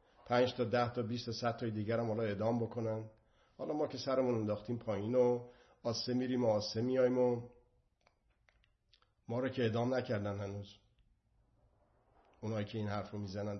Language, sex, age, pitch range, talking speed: Persian, male, 50-69, 110-135 Hz, 160 wpm